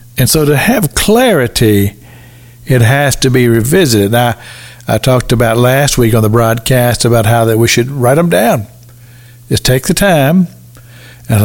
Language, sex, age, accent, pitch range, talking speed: English, male, 50-69, American, 120-165 Hz, 160 wpm